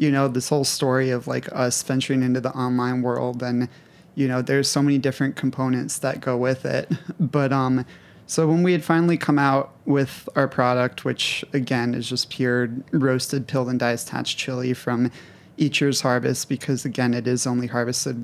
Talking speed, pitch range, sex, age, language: 190 wpm, 125-140 Hz, male, 30-49, English